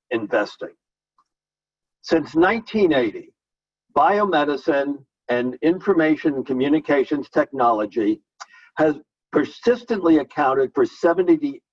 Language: English